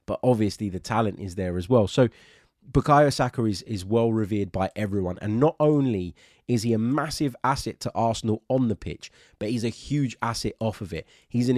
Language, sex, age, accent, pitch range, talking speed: English, male, 20-39, British, 95-125 Hz, 205 wpm